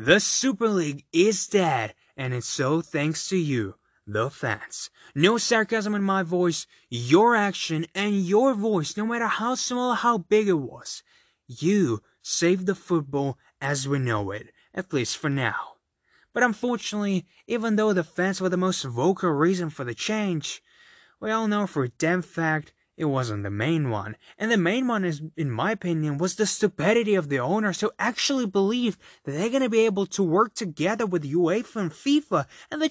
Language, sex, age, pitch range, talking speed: English, male, 20-39, 155-215 Hz, 180 wpm